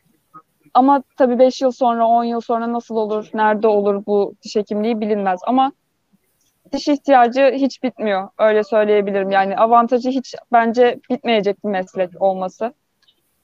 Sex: female